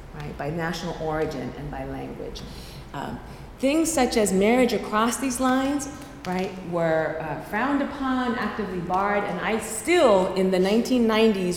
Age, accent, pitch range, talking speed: 40-59, American, 160-200 Hz, 145 wpm